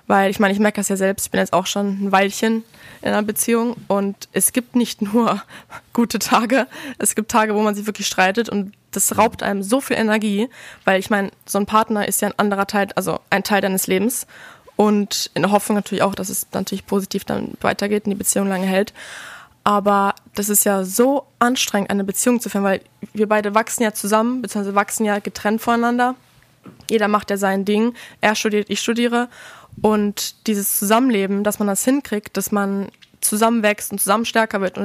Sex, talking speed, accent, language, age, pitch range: female, 205 wpm, German, German, 20-39, 195-225 Hz